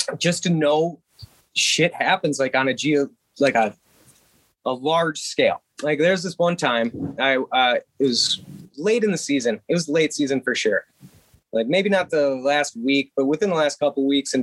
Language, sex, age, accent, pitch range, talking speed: English, male, 20-39, American, 130-165 Hz, 195 wpm